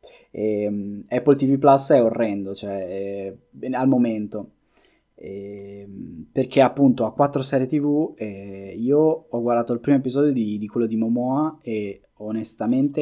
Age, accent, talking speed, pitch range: 20-39, native, 145 wpm, 105-130 Hz